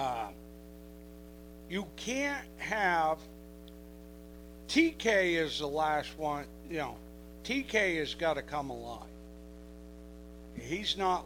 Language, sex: English, male